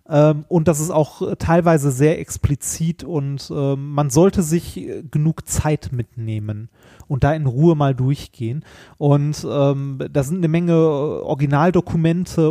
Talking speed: 125 wpm